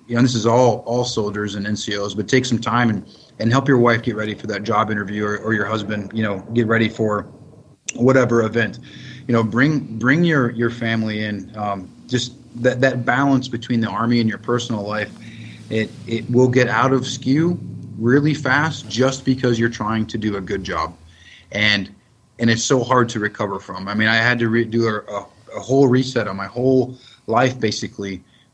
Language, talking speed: English, 210 wpm